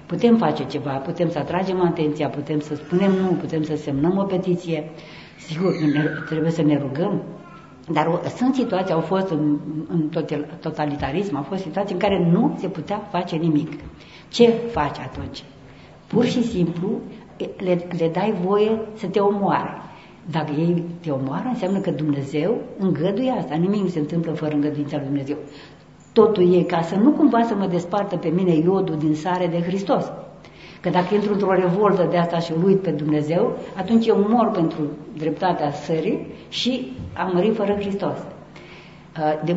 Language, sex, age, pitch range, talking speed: Romanian, female, 60-79, 155-205 Hz, 165 wpm